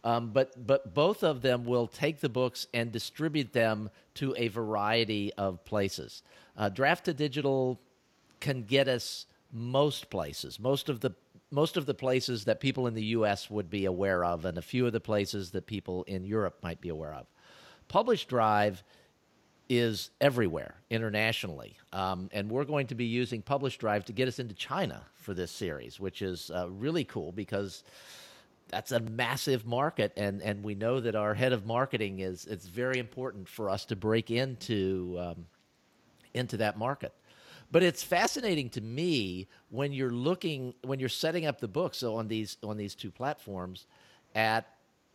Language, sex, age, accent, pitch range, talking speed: English, male, 50-69, American, 105-135 Hz, 175 wpm